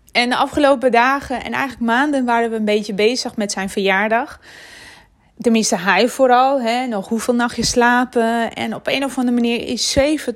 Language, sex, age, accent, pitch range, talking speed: Dutch, female, 20-39, Dutch, 215-250 Hz, 175 wpm